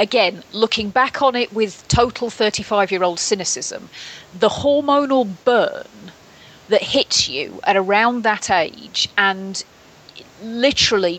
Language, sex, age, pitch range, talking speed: English, female, 40-59, 200-255 Hz, 115 wpm